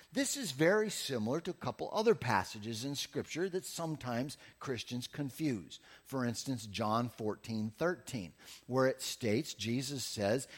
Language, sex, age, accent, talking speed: English, male, 50-69, American, 140 wpm